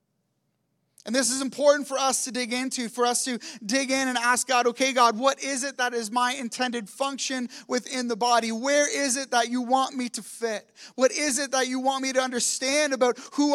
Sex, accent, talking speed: male, American, 220 wpm